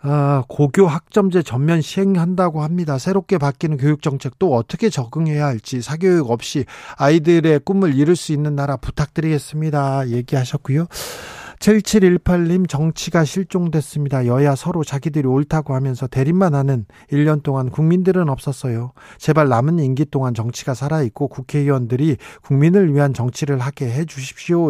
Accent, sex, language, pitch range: native, male, Korean, 135-170 Hz